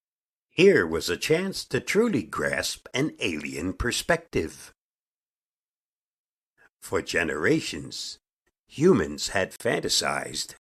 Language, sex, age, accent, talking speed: English, male, 60-79, American, 85 wpm